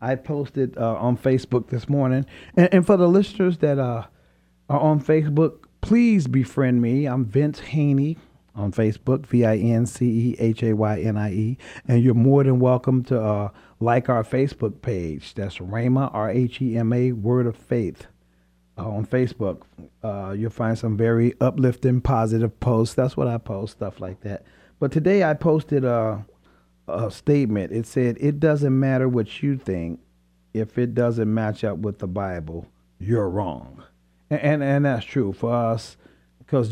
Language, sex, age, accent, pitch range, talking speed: English, male, 40-59, American, 110-135 Hz, 155 wpm